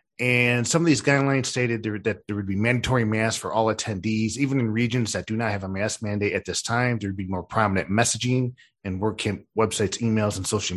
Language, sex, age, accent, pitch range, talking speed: English, male, 40-59, American, 100-120 Hz, 225 wpm